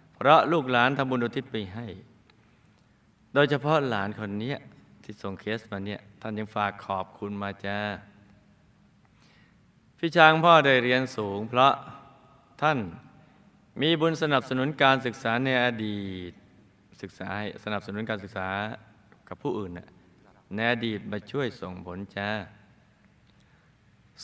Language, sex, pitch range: Thai, male, 105-135 Hz